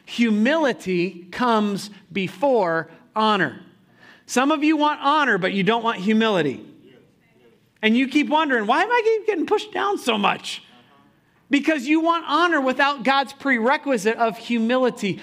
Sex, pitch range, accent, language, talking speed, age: male, 175-240 Hz, American, English, 140 wpm, 40-59